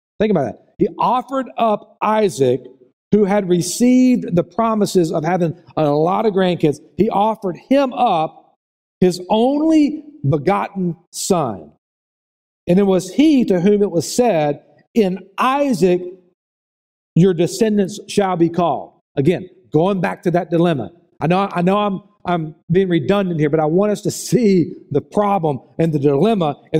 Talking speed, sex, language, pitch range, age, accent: 155 wpm, male, English, 150-210 Hz, 50-69, American